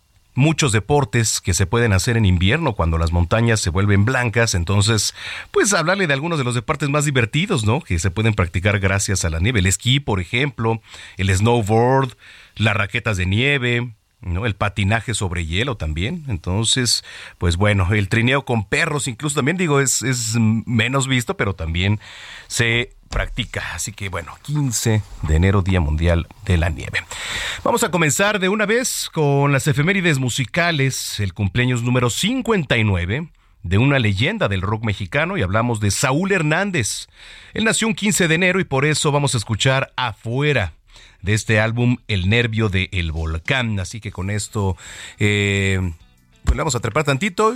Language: Spanish